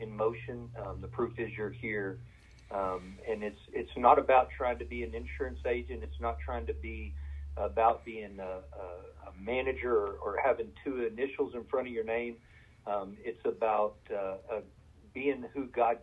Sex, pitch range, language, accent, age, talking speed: male, 105-140 Hz, English, American, 40-59, 185 wpm